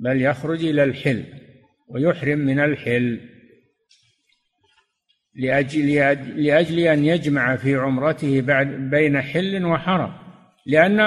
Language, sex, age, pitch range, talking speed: Arabic, male, 60-79, 135-180 Hz, 90 wpm